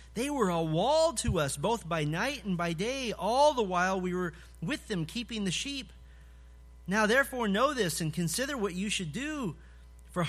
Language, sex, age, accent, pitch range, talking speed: English, male, 40-59, American, 140-190 Hz, 190 wpm